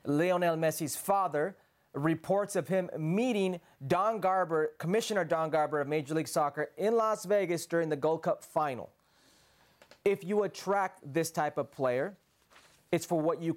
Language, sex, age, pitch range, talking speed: English, male, 30-49, 165-220 Hz, 155 wpm